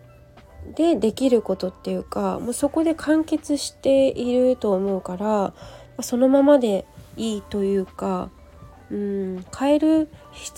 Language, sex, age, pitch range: Japanese, female, 20-39, 185-245 Hz